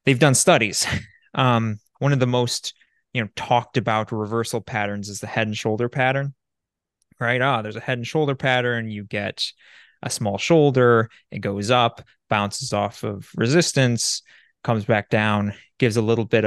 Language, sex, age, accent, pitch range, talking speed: English, male, 20-39, American, 110-135 Hz, 170 wpm